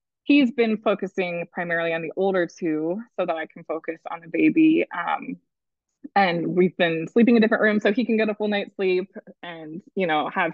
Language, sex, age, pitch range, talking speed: English, female, 20-39, 175-235 Hz, 210 wpm